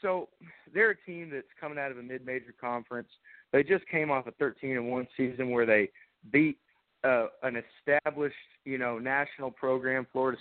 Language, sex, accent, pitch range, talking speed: English, male, American, 120-160 Hz, 165 wpm